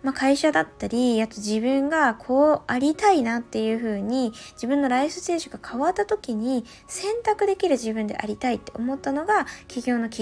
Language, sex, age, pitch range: Japanese, female, 20-39, 230-300 Hz